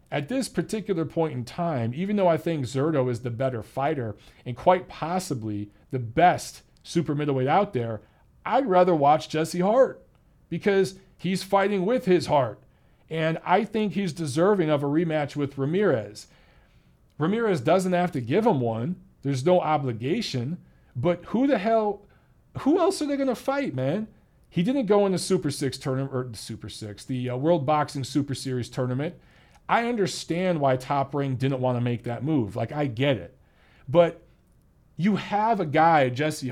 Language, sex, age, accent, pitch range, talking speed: English, male, 40-59, American, 135-180 Hz, 175 wpm